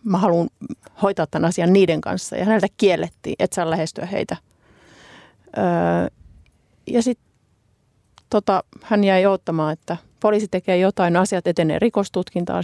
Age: 30-49